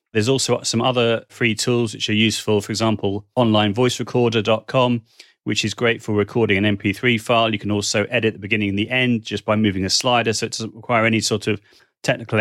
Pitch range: 105-120 Hz